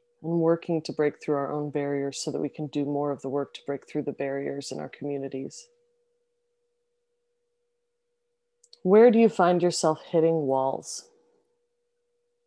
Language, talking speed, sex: English, 150 wpm, female